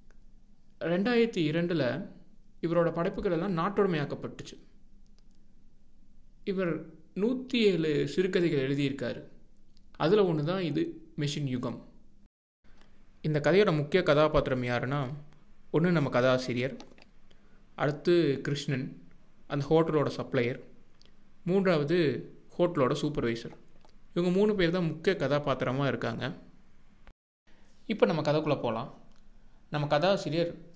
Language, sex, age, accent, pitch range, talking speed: Tamil, male, 20-39, native, 140-185 Hz, 90 wpm